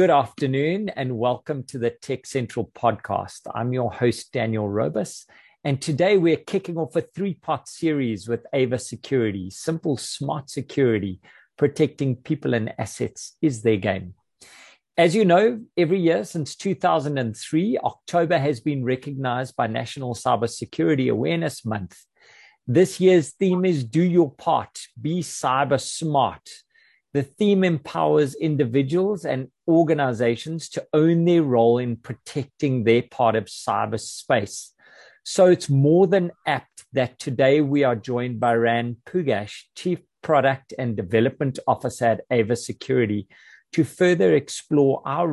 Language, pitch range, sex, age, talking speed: English, 120-160 Hz, male, 50-69, 135 wpm